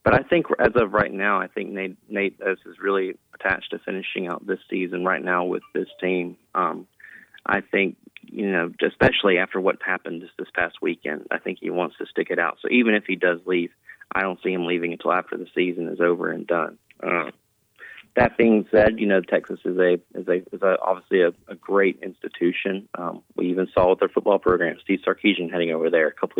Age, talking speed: 30-49, 220 wpm